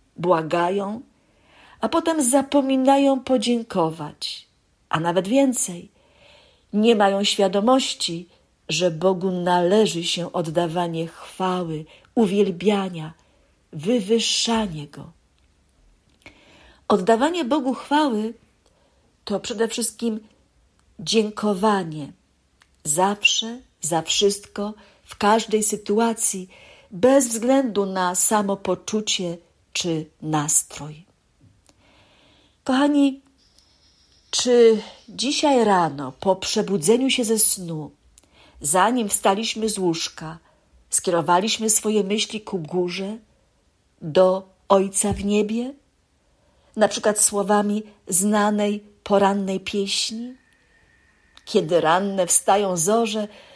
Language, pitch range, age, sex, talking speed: Polish, 180-230 Hz, 50-69, female, 80 wpm